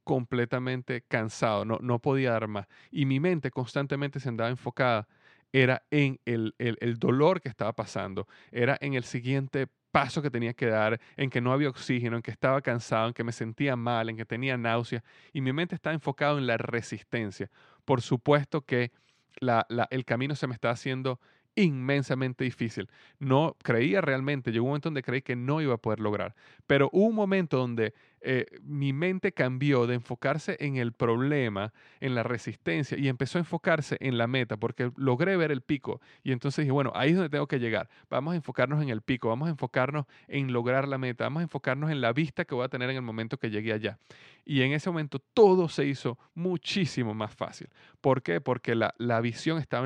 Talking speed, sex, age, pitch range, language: 205 wpm, male, 30-49, 120-145 Hz, Spanish